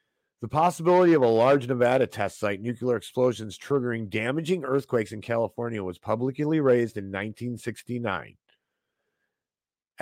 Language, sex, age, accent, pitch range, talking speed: English, male, 50-69, American, 110-140 Hz, 120 wpm